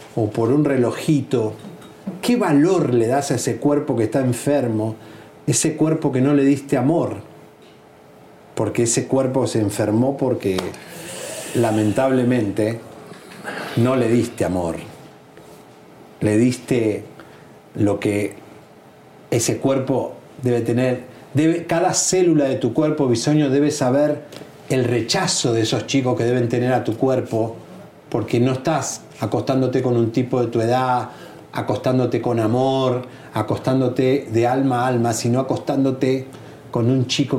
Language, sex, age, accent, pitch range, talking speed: Spanish, male, 50-69, Argentinian, 115-140 Hz, 130 wpm